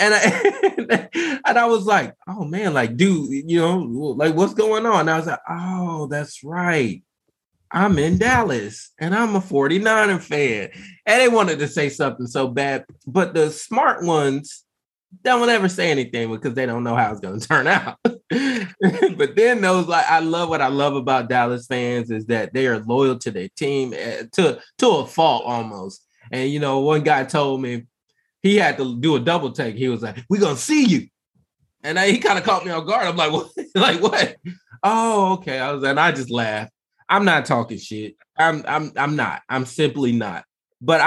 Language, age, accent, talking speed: English, 20-39, American, 200 wpm